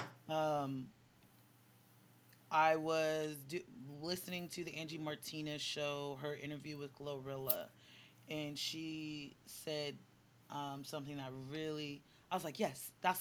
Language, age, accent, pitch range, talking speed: English, 20-39, American, 140-175 Hz, 115 wpm